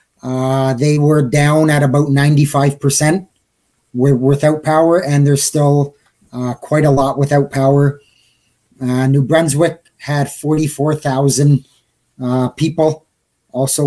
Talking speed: 110 wpm